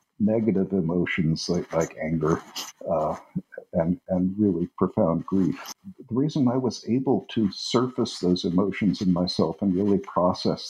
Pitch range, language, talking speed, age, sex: 90-110 Hz, English, 140 wpm, 60-79, male